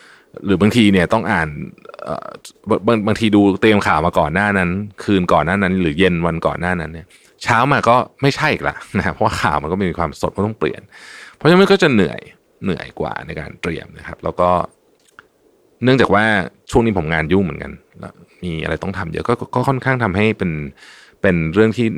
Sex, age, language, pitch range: male, 20-39, Thai, 85-130 Hz